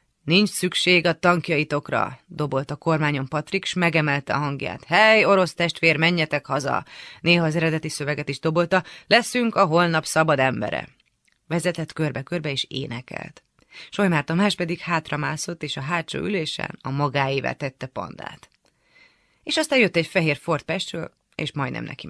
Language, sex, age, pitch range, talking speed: Hungarian, female, 30-49, 145-180 Hz, 145 wpm